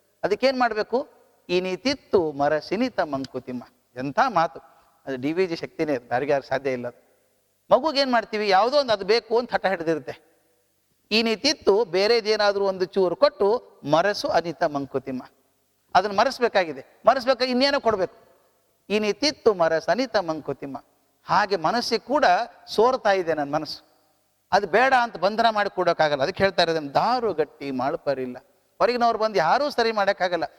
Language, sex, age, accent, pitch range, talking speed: Kannada, male, 50-69, native, 145-220 Hz, 135 wpm